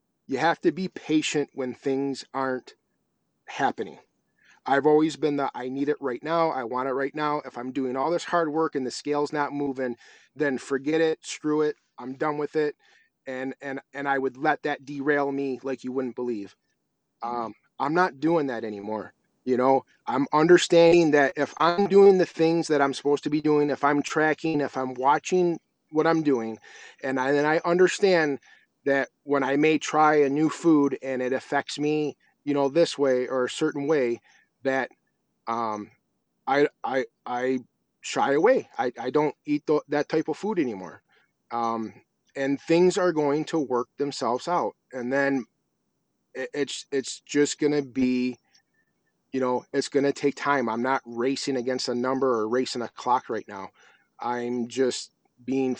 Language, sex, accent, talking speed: English, male, American, 185 wpm